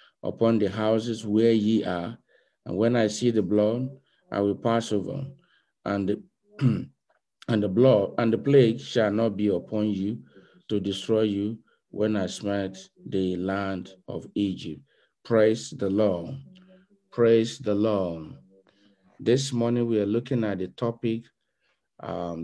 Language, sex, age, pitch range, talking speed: English, male, 50-69, 90-115 Hz, 145 wpm